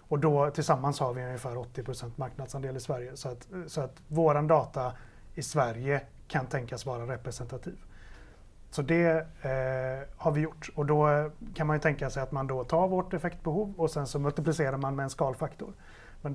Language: Swedish